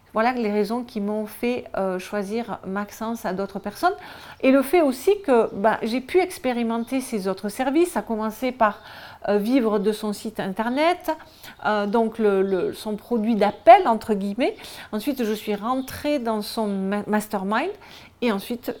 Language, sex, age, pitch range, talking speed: French, female, 40-59, 210-255 Hz, 155 wpm